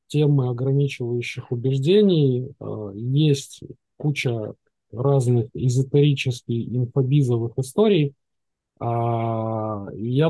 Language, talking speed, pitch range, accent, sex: Russian, 60 wpm, 120-145 Hz, native, male